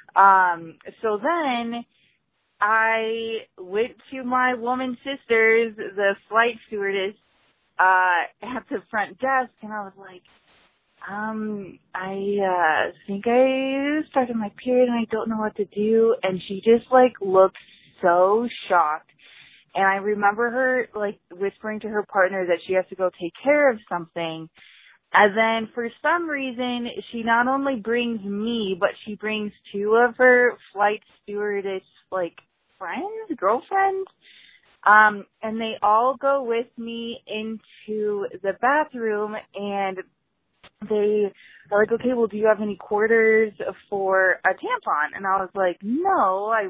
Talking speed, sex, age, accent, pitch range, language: 145 wpm, female, 20-39, American, 195-250 Hz, English